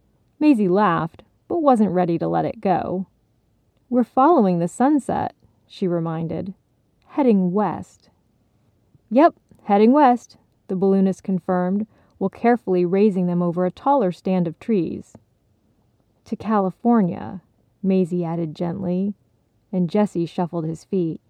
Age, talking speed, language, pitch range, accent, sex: 30-49, 120 wpm, English, 165-205 Hz, American, female